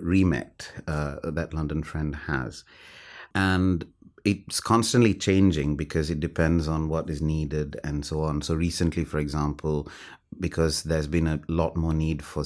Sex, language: male, English